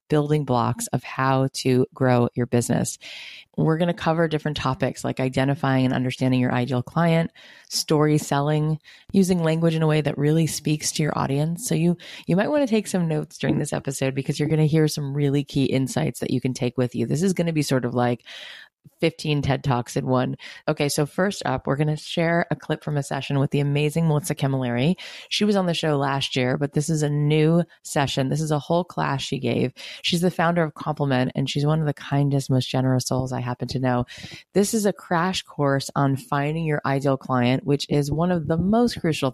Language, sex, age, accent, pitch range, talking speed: English, female, 30-49, American, 130-160 Hz, 225 wpm